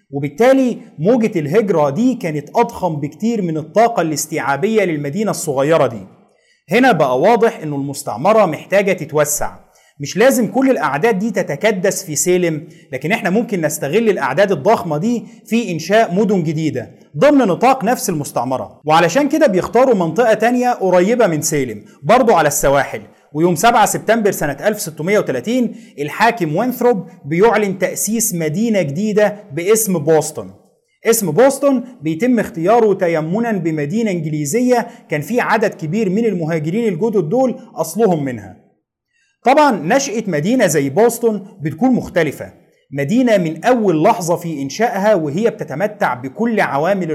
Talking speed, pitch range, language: 130 wpm, 155-225 Hz, Arabic